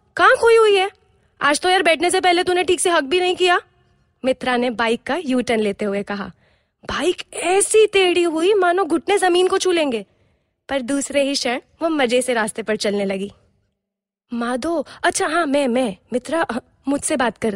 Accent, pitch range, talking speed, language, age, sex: native, 245-350 Hz, 180 wpm, Hindi, 20-39, female